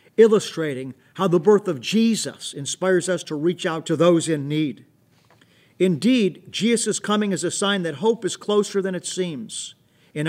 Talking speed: 170 wpm